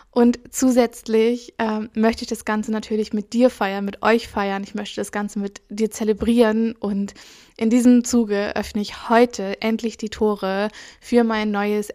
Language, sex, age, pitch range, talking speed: German, female, 10-29, 205-225 Hz, 170 wpm